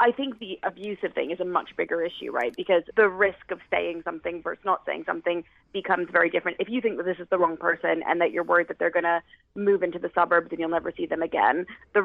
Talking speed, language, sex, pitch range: 260 wpm, English, female, 170-195 Hz